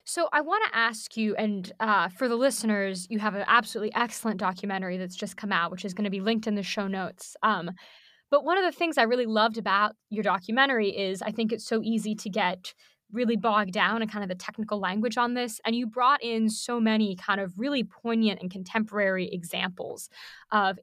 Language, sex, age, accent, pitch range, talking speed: English, female, 20-39, American, 195-230 Hz, 220 wpm